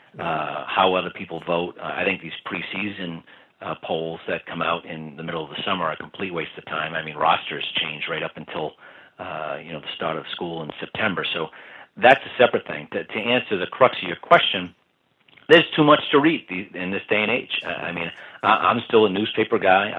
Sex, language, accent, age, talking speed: male, English, American, 40-59, 225 wpm